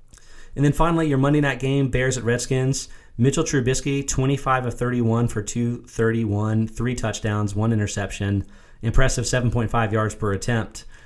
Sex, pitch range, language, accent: male, 100-125 Hz, English, American